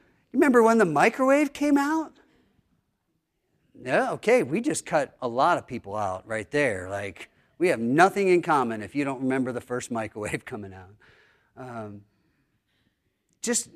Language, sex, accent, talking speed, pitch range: English, male, American, 155 wpm, 140-185 Hz